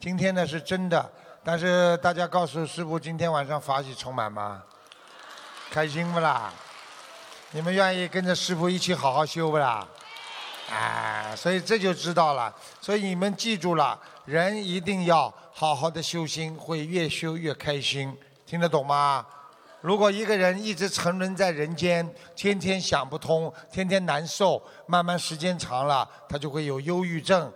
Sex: male